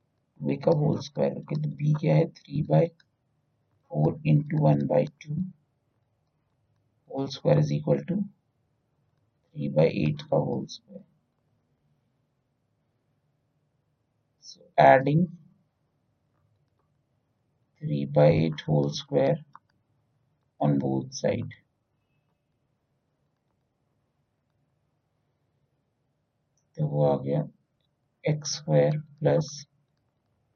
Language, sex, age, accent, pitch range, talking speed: Hindi, male, 60-79, native, 115-150 Hz, 80 wpm